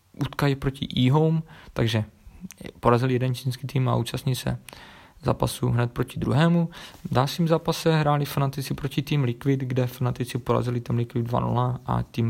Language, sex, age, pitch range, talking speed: Czech, male, 20-39, 115-135 Hz, 150 wpm